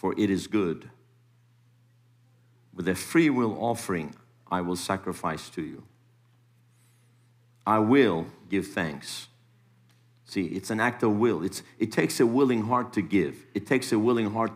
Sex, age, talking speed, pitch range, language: male, 50-69, 155 wpm, 110-120 Hz, English